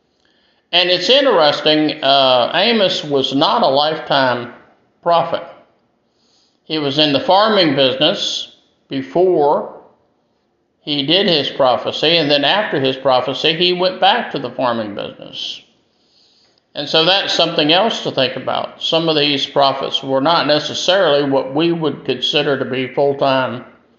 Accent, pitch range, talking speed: American, 130-160 Hz, 140 wpm